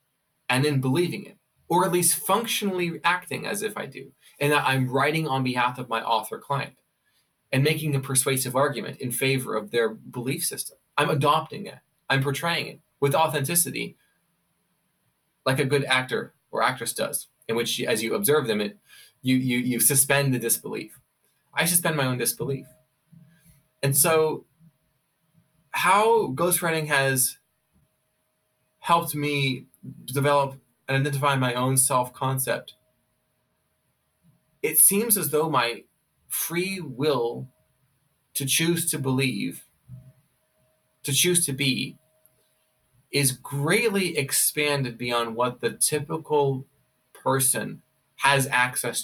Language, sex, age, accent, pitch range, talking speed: English, male, 20-39, American, 130-160 Hz, 130 wpm